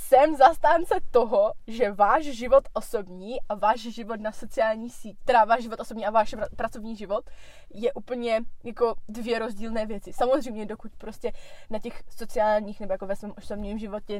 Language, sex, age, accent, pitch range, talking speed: Czech, female, 20-39, native, 210-255 Hz, 160 wpm